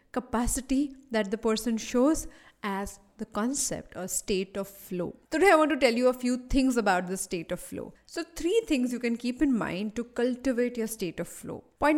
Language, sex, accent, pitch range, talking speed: English, female, Indian, 190-270 Hz, 205 wpm